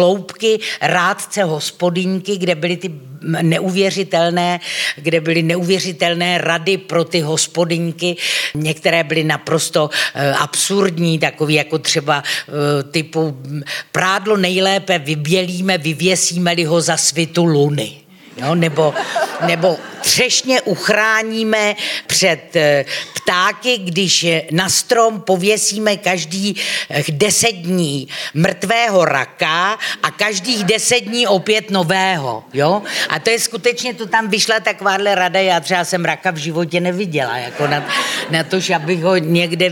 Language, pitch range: Czech, 160-200 Hz